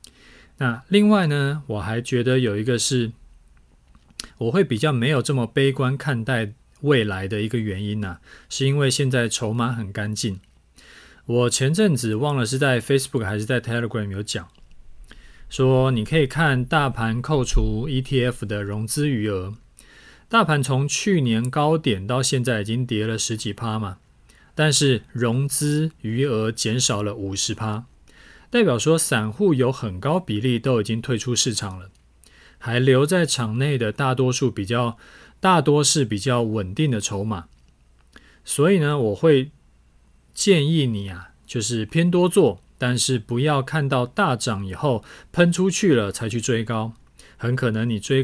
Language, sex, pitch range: Chinese, male, 110-140 Hz